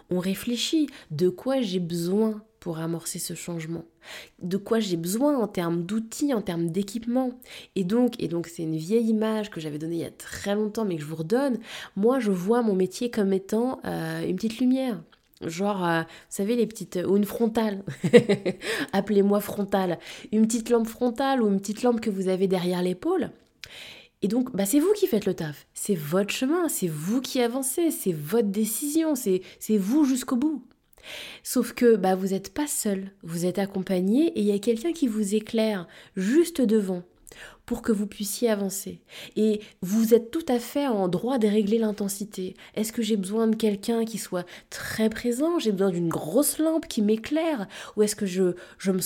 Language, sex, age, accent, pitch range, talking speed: French, female, 20-39, French, 185-240 Hz, 195 wpm